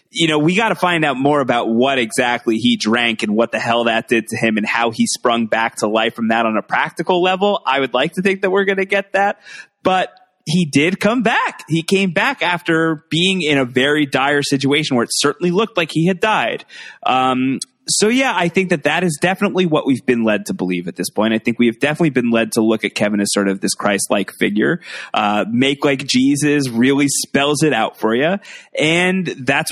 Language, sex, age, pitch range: English, male, 20-39, 120-175 Hz